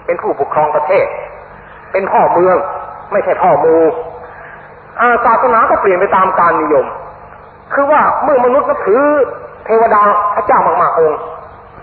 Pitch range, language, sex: 185-280 Hz, Thai, male